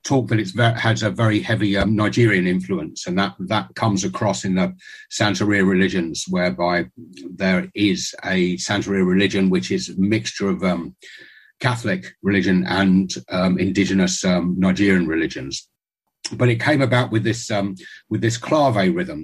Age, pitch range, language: 50-69, 95-125 Hz, Korean